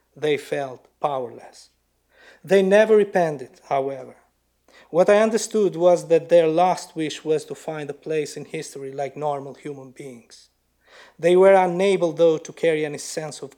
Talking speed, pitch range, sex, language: 155 wpm, 140-175 Hz, male, English